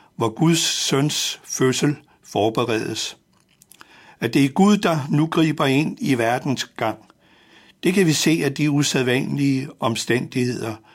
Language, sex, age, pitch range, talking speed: Danish, male, 60-79, 110-150 Hz, 130 wpm